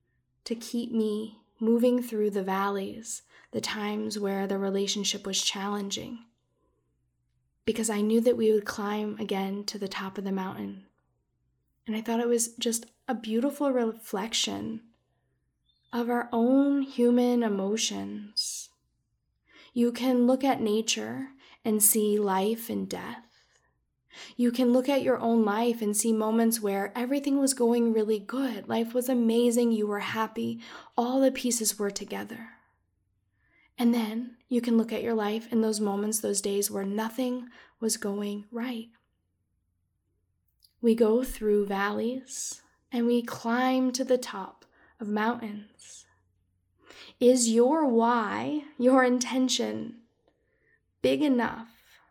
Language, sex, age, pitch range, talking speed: English, female, 10-29, 200-240 Hz, 135 wpm